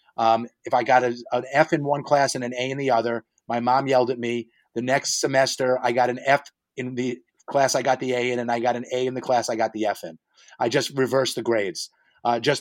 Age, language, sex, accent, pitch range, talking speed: 30-49, English, male, American, 120-150 Hz, 260 wpm